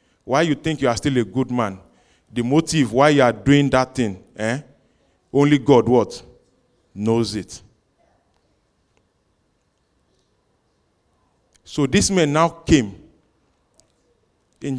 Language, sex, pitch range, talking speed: English, male, 115-150 Hz, 120 wpm